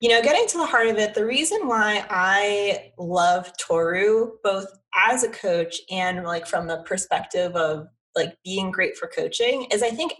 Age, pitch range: 20-39, 175-230 Hz